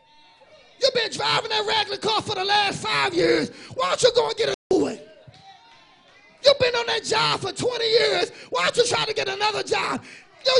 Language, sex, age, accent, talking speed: English, male, 30-49, American, 210 wpm